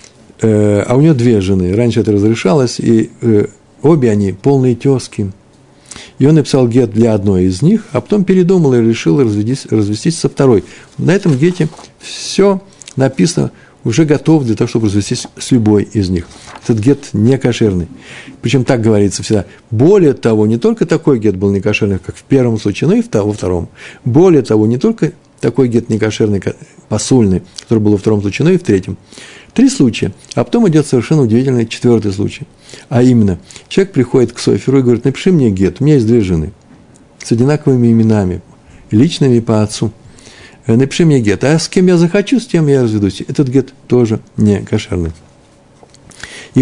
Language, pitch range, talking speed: Russian, 105-140 Hz, 175 wpm